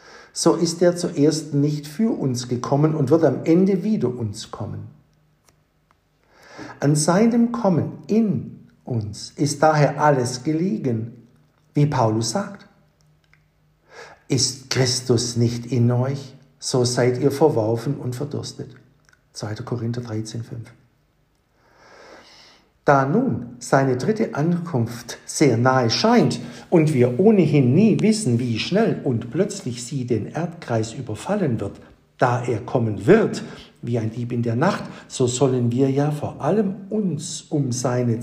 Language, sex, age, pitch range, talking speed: German, male, 60-79, 120-160 Hz, 130 wpm